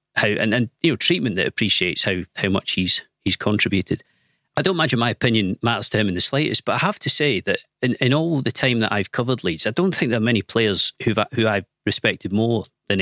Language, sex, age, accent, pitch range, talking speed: English, male, 40-59, British, 110-145 Hz, 255 wpm